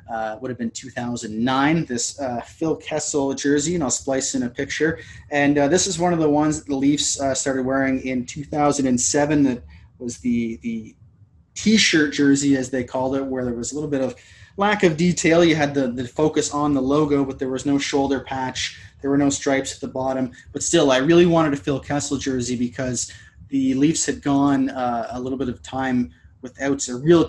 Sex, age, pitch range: male, 20-39, 120-140 Hz